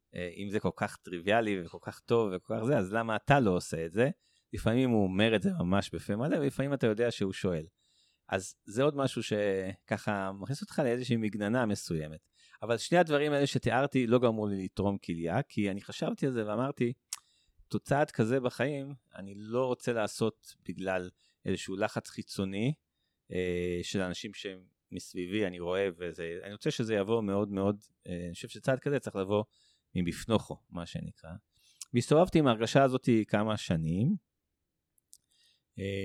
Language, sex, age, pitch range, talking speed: Hebrew, male, 30-49, 95-125 Hz, 155 wpm